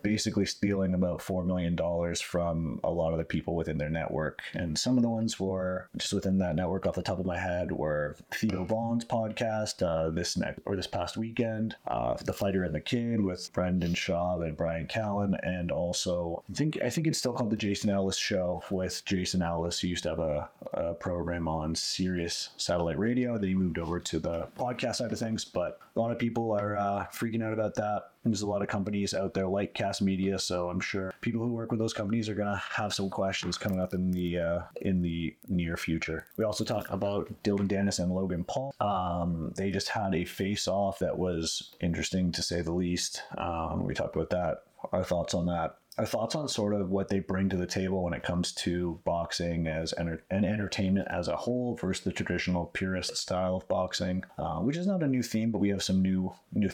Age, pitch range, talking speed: 30-49, 90-105 Hz, 225 wpm